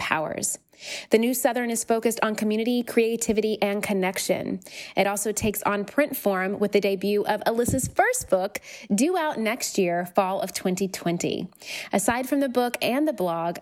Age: 20-39